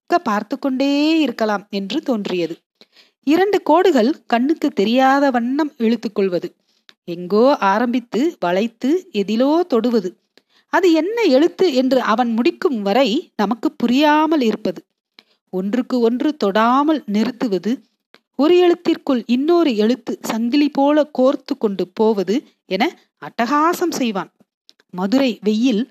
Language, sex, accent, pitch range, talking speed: Tamil, female, native, 215-300 Hz, 100 wpm